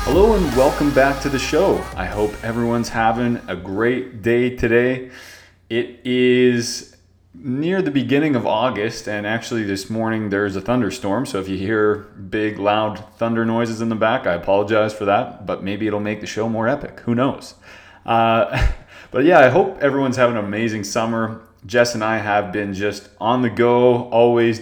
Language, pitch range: English, 105-120 Hz